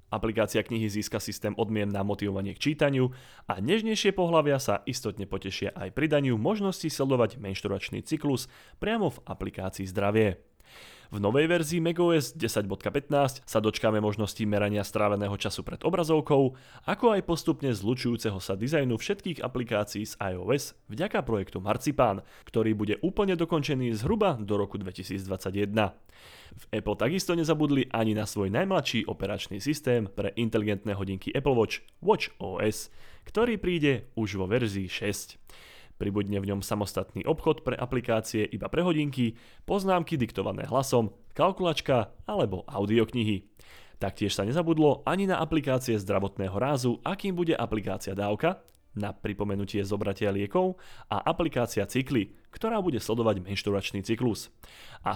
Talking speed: 135 wpm